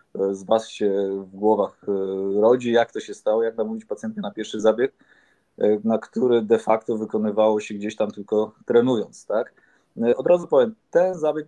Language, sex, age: Polish, male, 20-39